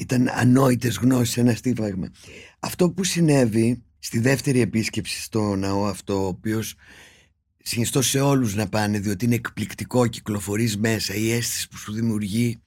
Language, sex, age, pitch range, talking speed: Greek, male, 50-69, 105-145 Hz, 145 wpm